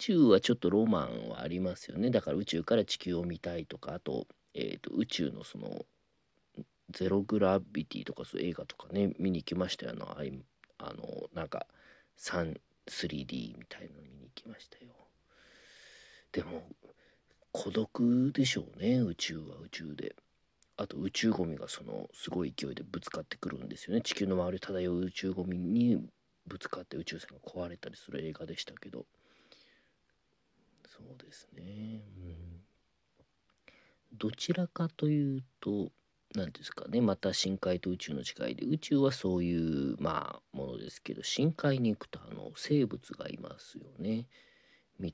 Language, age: Japanese, 40-59